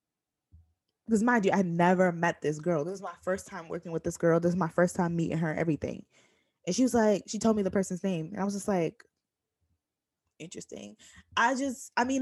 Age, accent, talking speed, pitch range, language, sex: 20-39, American, 220 wpm, 165-210 Hz, English, female